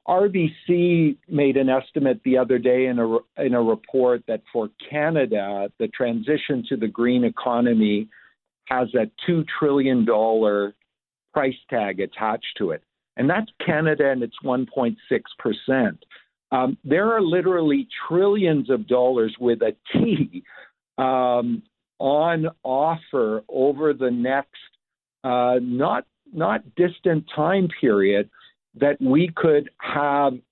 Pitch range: 125-165 Hz